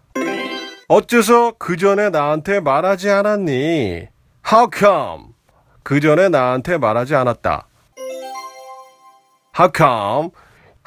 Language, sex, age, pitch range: Korean, male, 40-59, 120-195 Hz